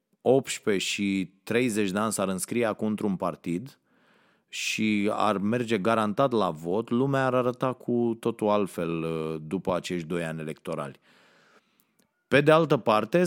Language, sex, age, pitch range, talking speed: Romanian, male, 30-49, 100-130 Hz, 140 wpm